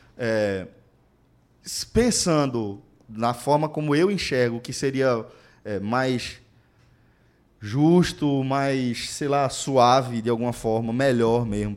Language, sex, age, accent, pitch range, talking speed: Portuguese, male, 20-39, Brazilian, 115-165 Hz, 95 wpm